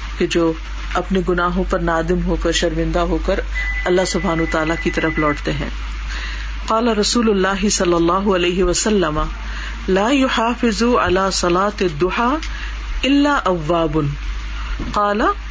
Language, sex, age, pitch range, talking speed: Urdu, female, 50-69, 165-210 Hz, 105 wpm